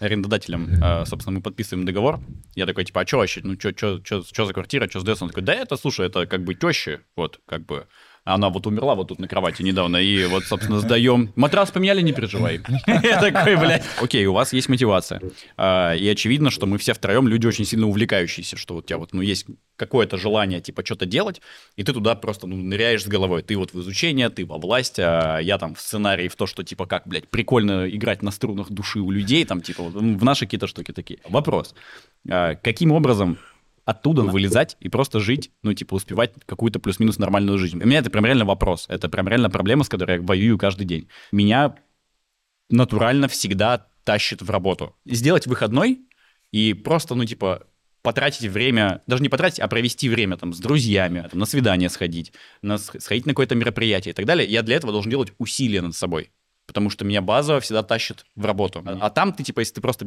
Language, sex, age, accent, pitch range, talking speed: Russian, male, 20-39, native, 95-120 Hz, 200 wpm